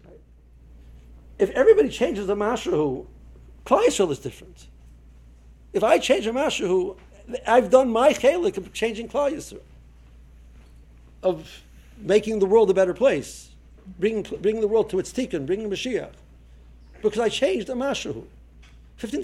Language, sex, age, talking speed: English, male, 60-79, 135 wpm